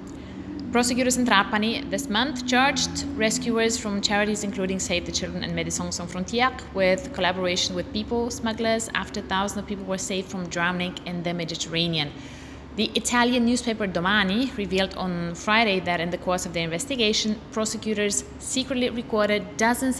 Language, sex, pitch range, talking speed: English, female, 180-225 Hz, 155 wpm